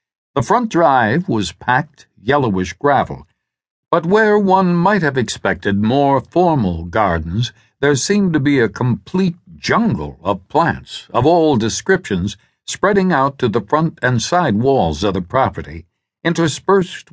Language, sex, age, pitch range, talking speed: English, male, 60-79, 105-155 Hz, 140 wpm